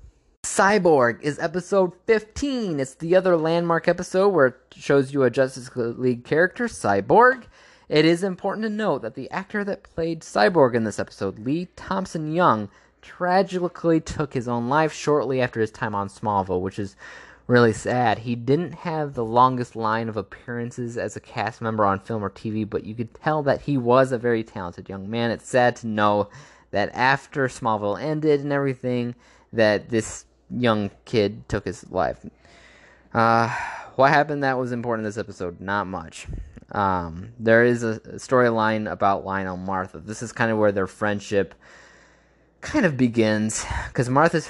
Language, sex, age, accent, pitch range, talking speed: English, male, 20-39, American, 105-145 Hz, 170 wpm